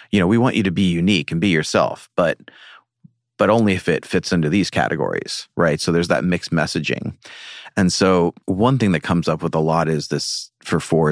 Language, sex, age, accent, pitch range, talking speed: English, male, 30-49, American, 80-100 Hz, 215 wpm